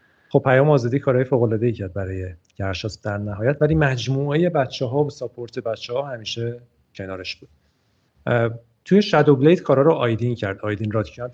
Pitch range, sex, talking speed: 110-135 Hz, male, 170 wpm